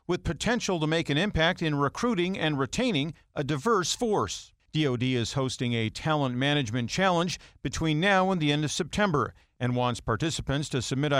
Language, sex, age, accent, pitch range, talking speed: English, male, 50-69, American, 125-160 Hz, 170 wpm